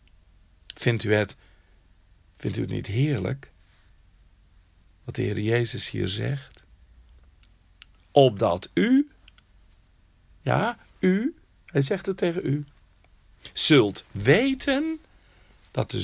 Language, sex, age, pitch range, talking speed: Dutch, male, 50-69, 90-145 Hz, 100 wpm